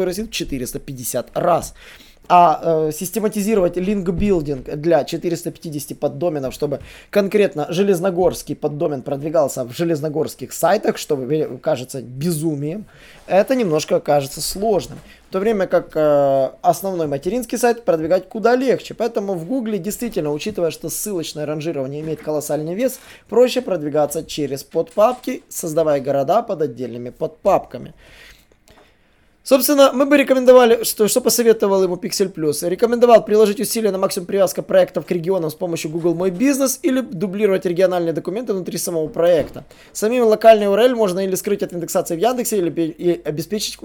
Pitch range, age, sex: 155-215 Hz, 20-39, male